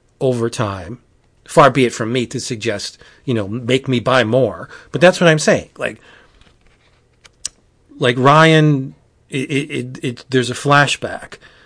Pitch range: 115-135 Hz